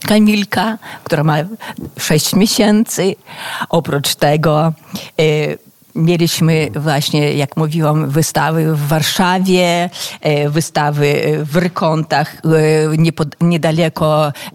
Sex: female